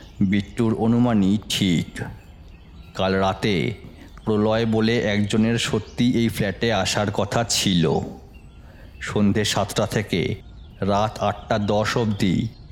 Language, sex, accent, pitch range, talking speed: Bengali, male, native, 95-110 Hz, 55 wpm